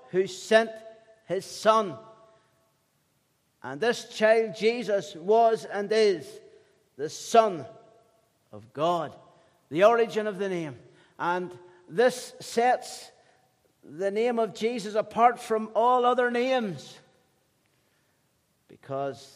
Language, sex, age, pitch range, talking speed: English, male, 60-79, 145-215 Hz, 100 wpm